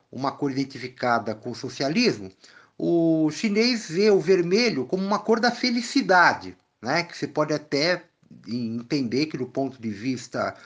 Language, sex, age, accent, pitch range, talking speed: Portuguese, male, 50-69, Brazilian, 135-200 Hz, 150 wpm